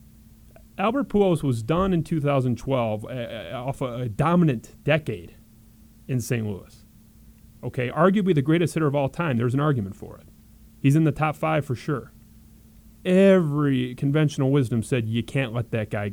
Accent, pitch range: American, 115-165 Hz